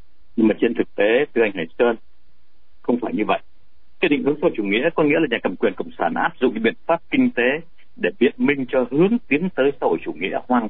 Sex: male